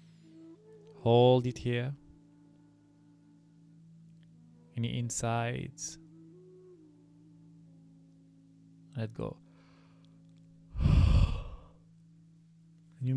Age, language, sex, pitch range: 20-39, English, male, 115-160 Hz